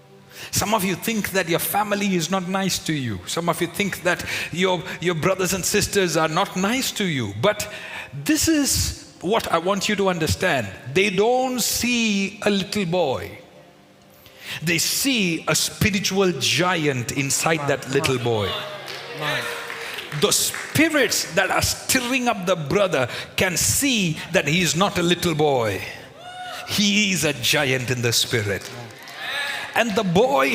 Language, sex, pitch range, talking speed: English, male, 165-205 Hz, 155 wpm